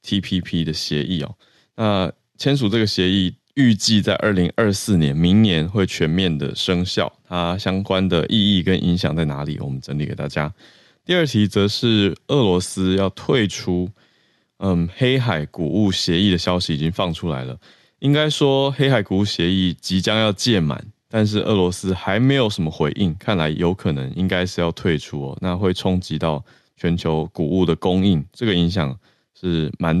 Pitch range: 85-105 Hz